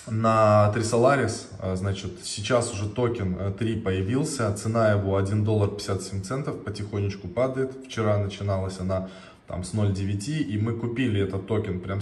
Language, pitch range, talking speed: Russian, 100-115 Hz, 140 wpm